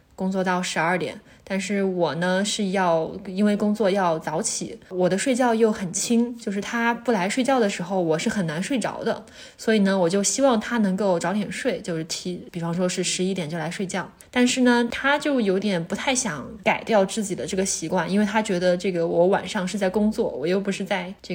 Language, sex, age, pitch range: Chinese, female, 20-39, 180-230 Hz